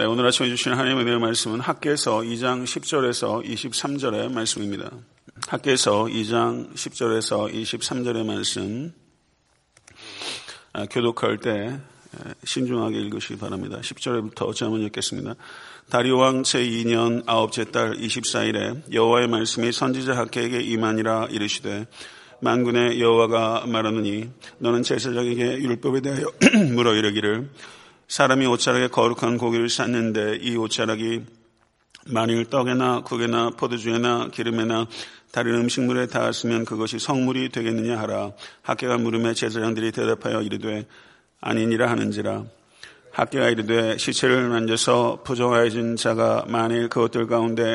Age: 40-59